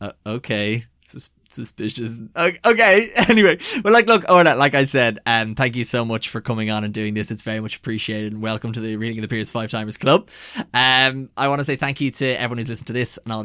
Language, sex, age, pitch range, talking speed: English, male, 20-39, 110-145 Hz, 240 wpm